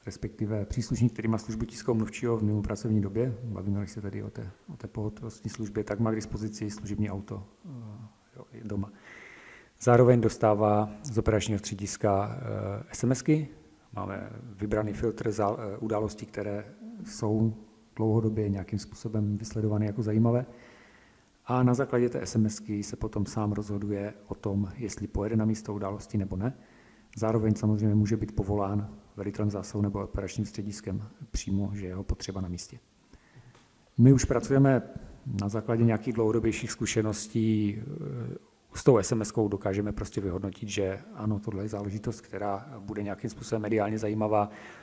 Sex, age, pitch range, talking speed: male, 40-59, 105-115 Hz, 140 wpm